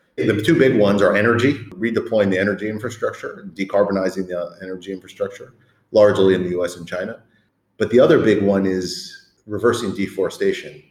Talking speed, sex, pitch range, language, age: 160 wpm, male, 95-125 Hz, English, 40-59